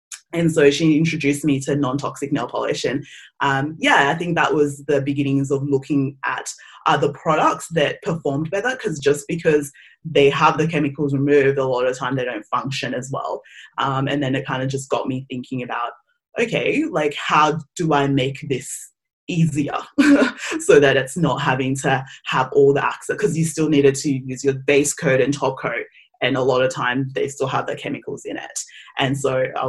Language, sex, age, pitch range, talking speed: English, female, 20-39, 135-160 Hz, 200 wpm